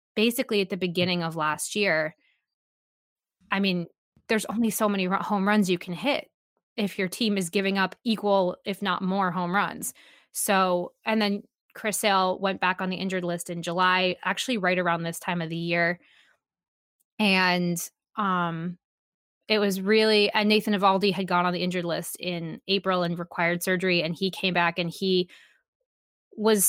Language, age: English, 20-39